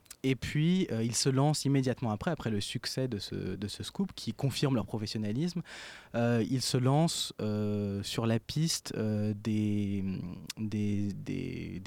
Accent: French